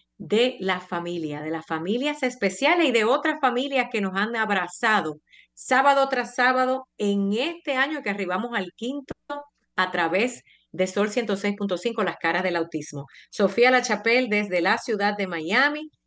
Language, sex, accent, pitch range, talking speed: Spanish, female, American, 175-235 Hz, 155 wpm